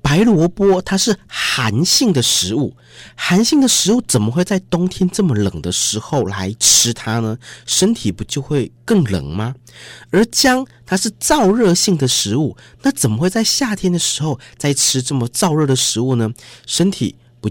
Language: Chinese